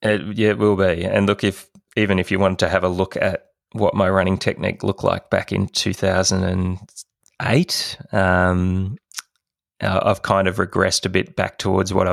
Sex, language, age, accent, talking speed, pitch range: male, English, 20-39, Australian, 195 wpm, 90-100 Hz